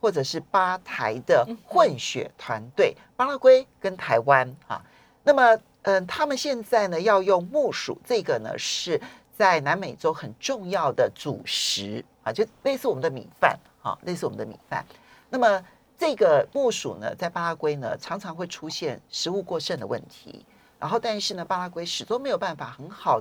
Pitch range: 165-265 Hz